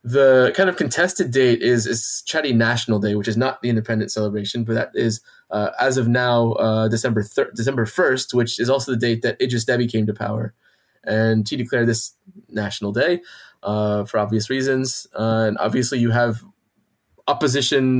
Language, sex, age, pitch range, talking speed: English, male, 20-39, 110-130 Hz, 185 wpm